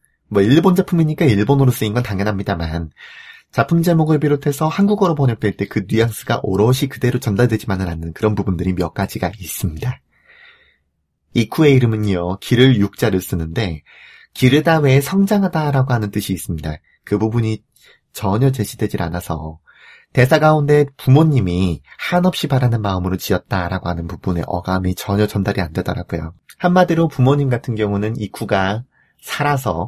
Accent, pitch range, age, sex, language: native, 95-135 Hz, 30-49, male, Korean